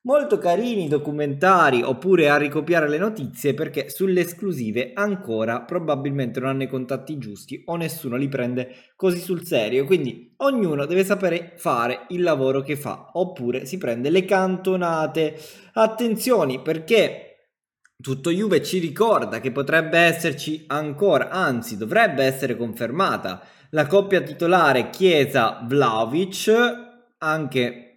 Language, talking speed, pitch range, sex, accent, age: Italian, 130 wpm, 135-185 Hz, male, native, 20-39